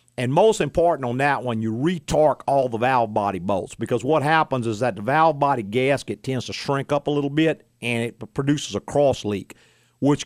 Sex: male